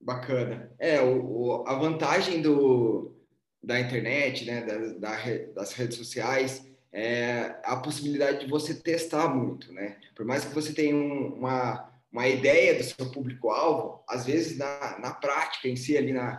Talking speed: 135 wpm